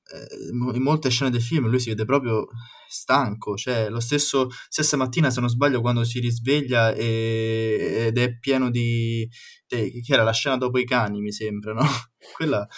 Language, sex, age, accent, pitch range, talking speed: Italian, male, 20-39, native, 115-145 Hz, 180 wpm